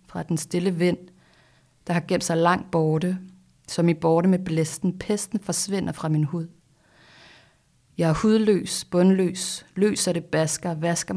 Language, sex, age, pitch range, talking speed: Danish, female, 30-49, 155-185 Hz, 150 wpm